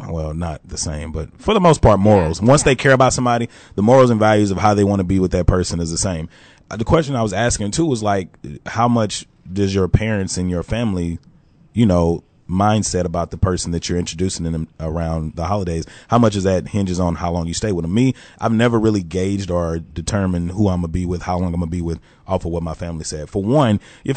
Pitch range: 90-110 Hz